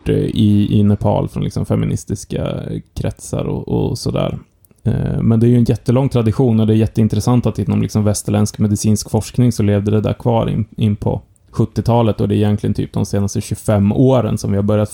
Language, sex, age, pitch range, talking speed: Swedish, male, 20-39, 100-120 Hz, 190 wpm